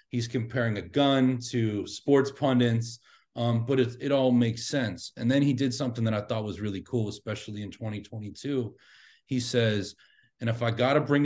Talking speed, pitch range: 190 wpm, 110-130 Hz